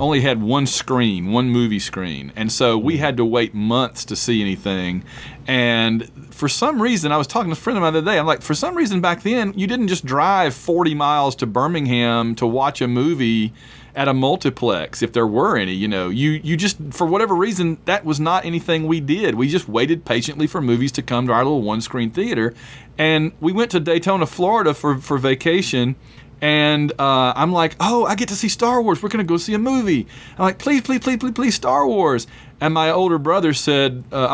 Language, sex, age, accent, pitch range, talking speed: English, male, 40-59, American, 125-170 Hz, 220 wpm